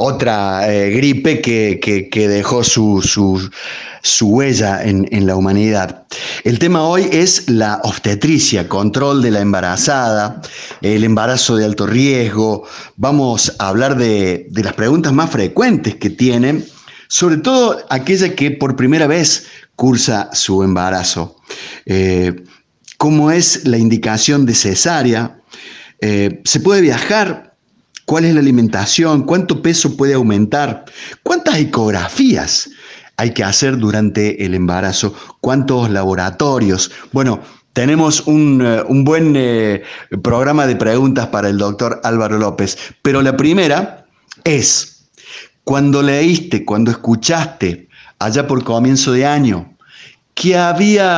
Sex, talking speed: male, 125 wpm